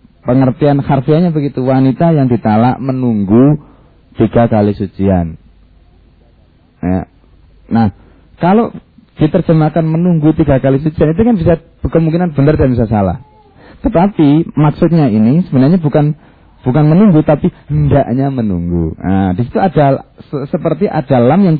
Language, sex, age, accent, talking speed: Indonesian, male, 30-49, native, 120 wpm